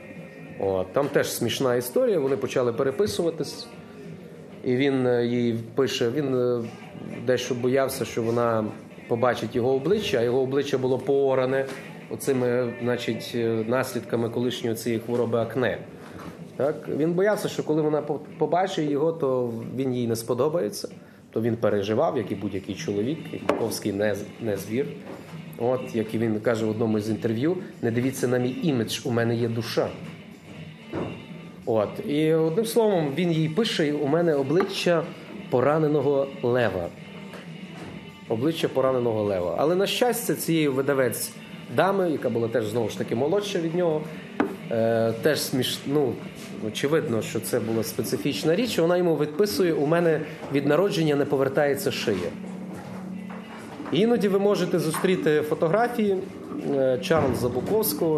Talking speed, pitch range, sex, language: 135 wpm, 120-170 Hz, male, Ukrainian